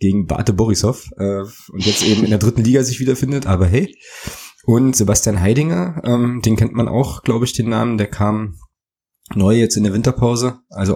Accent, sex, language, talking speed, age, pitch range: German, male, German, 190 wpm, 20-39, 95-115 Hz